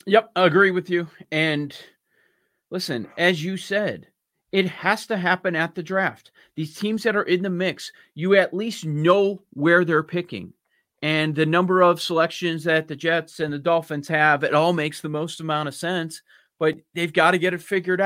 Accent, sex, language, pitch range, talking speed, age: American, male, English, 170-220 Hz, 195 wpm, 40-59